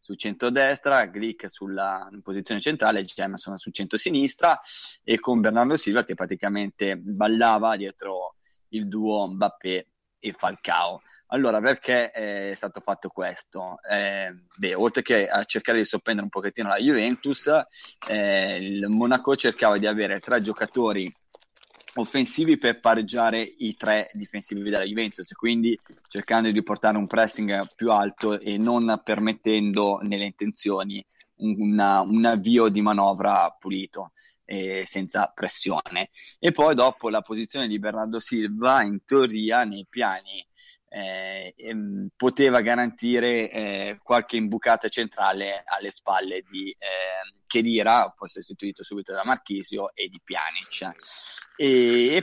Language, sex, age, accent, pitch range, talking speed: Italian, male, 20-39, native, 100-115 Hz, 130 wpm